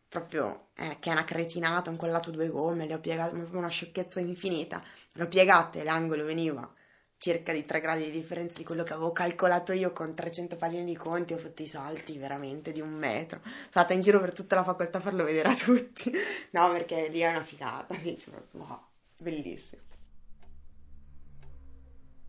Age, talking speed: 20-39, 190 wpm